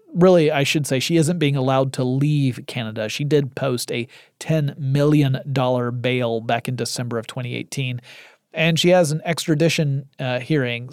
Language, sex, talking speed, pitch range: English, male, 165 wpm, 130-160 Hz